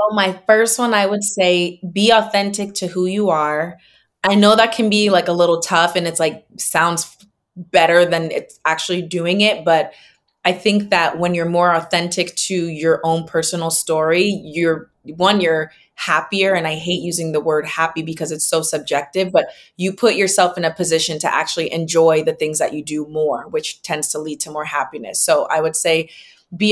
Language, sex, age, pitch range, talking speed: English, female, 20-39, 160-190 Hz, 200 wpm